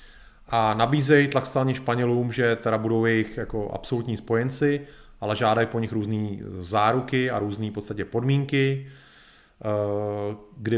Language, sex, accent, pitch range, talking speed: Czech, male, native, 105-130 Hz, 120 wpm